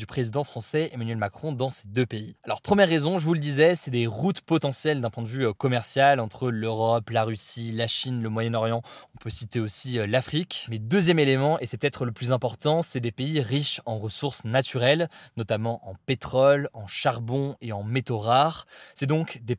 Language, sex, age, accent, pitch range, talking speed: French, male, 20-39, French, 115-145 Hz, 200 wpm